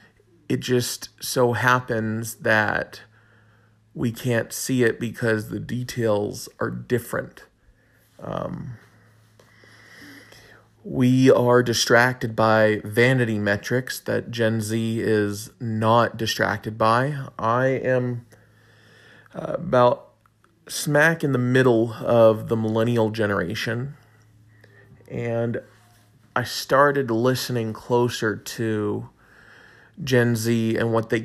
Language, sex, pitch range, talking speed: English, male, 110-125 Hz, 95 wpm